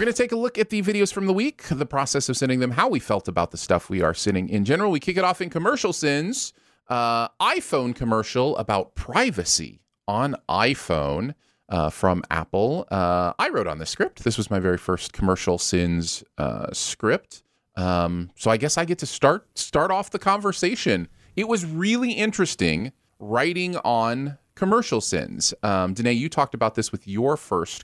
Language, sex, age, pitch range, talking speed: English, male, 30-49, 100-165 Hz, 190 wpm